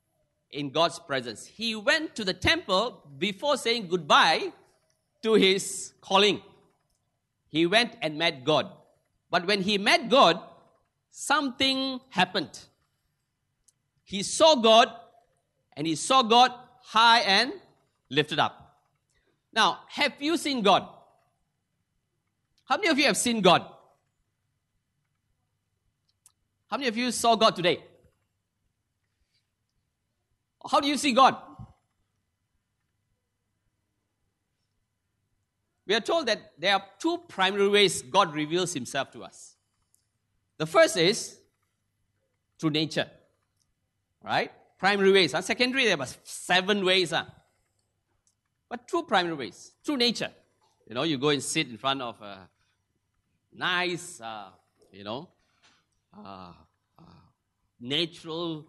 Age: 50-69